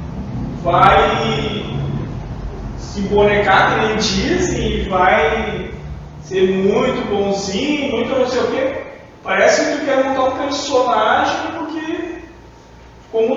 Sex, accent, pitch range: male, Brazilian, 195-275 Hz